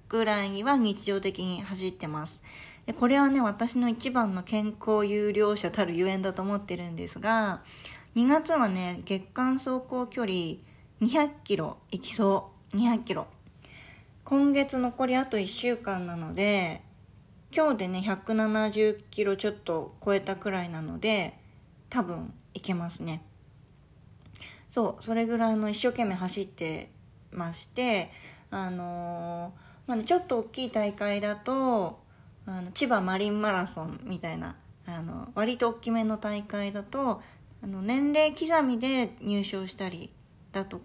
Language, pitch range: Japanese, 190-245 Hz